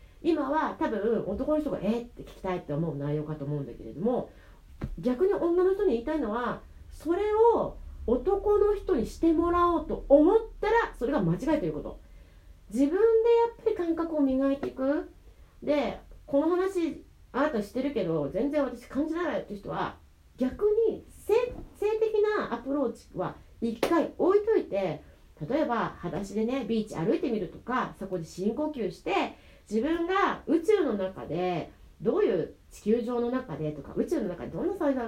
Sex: female